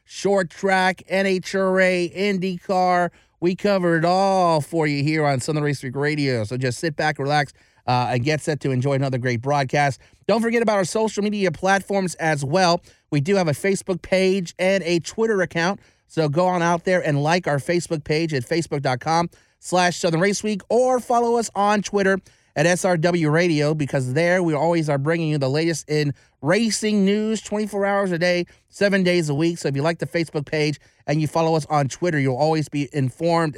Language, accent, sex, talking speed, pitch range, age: English, American, male, 195 wpm, 140-185 Hz, 30-49